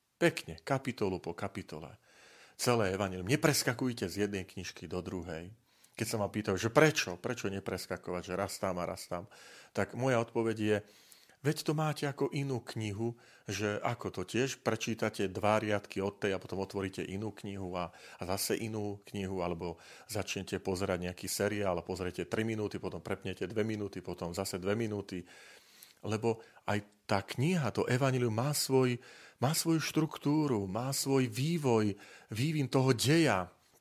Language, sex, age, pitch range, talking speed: Slovak, male, 40-59, 95-120 Hz, 155 wpm